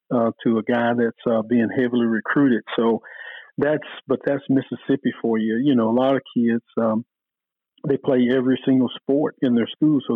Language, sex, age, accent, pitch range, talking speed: English, male, 50-69, American, 120-135 Hz, 190 wpm